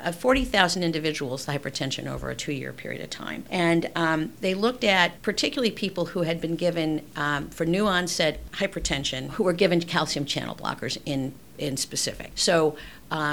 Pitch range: 145-190 Hz